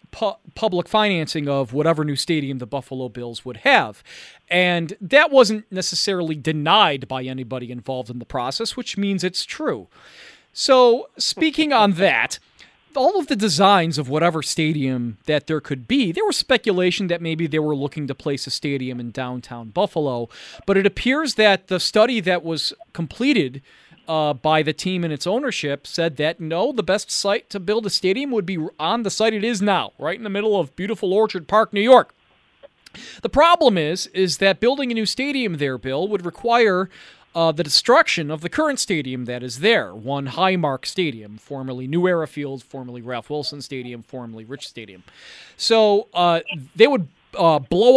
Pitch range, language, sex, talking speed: 140-210 Hz, English, male, 180 wpm